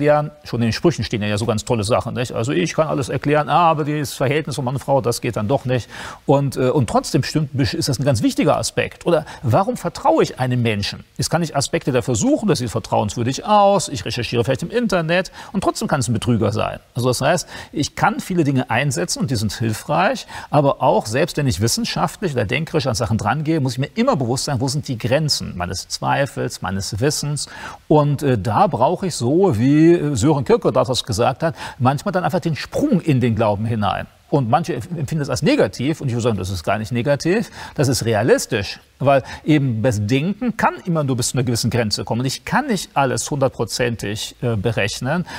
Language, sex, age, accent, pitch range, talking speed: German, male, 40-59, German, 120-155 Hz, 215 wpm